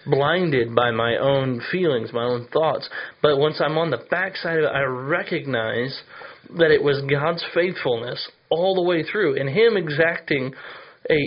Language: English